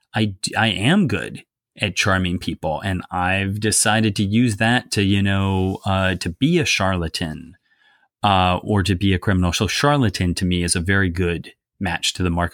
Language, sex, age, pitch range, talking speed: English, male, 30-49, 95-120 Hz, 185 wpm